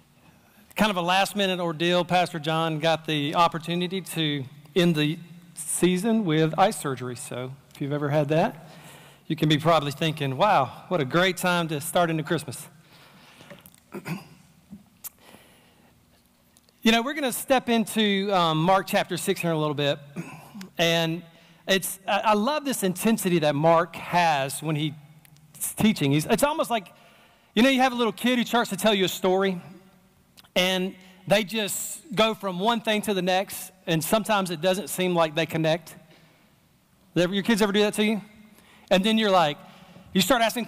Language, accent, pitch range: English, American, 165-215 Hz